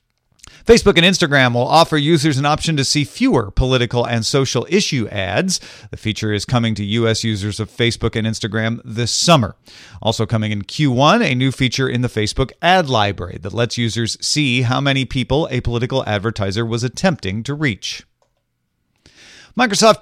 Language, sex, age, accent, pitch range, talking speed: English, male, 40-59, American, 115-150 Hz, 170 wpm